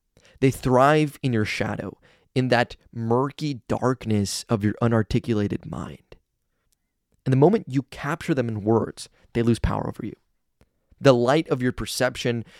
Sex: male